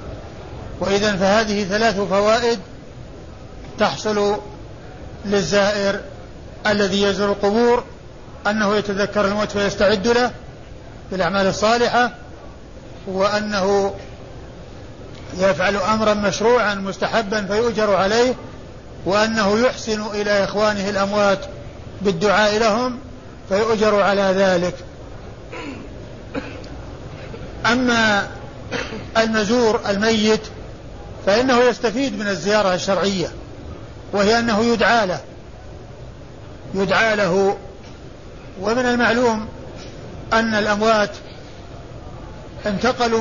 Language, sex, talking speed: Arabic, male, 75 wpm